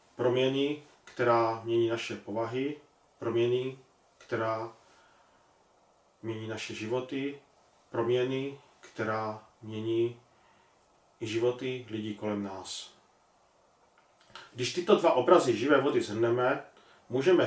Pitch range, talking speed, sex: 115-150 Hz, 90 wpm, male